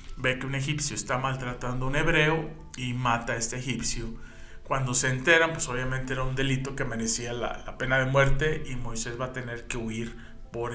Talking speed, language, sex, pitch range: 205 wpm, Spanish, male, 115-135 Hz